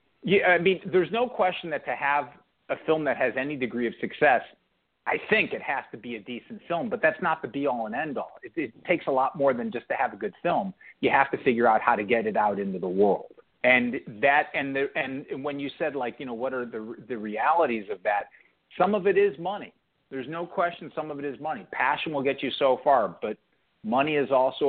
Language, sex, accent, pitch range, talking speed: English, male, American, 120-170 Hz, 245 wpm